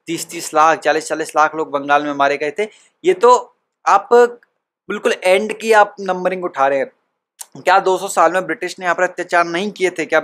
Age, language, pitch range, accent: 20-39, Hindi, 145-185 Hz, native